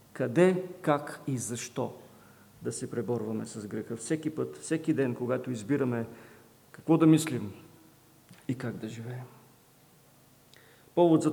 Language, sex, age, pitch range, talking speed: English, male, 50-69, 125-160 Hz, 125 wpm